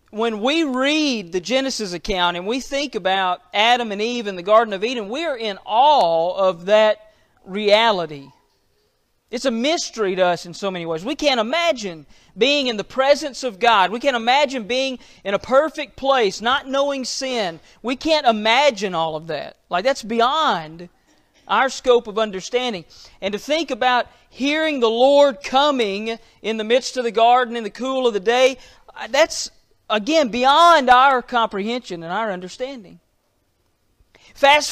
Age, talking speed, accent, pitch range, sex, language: 40-59, 165 wpm, American, 200-275 Hz, male, English